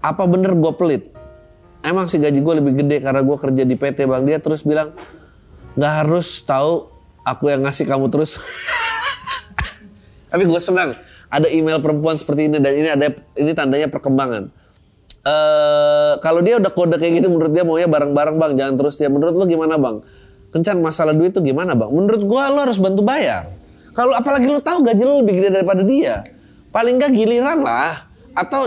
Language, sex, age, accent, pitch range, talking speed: Indonesian, male, 20-39, native, 145-210 Hz, 180 wpm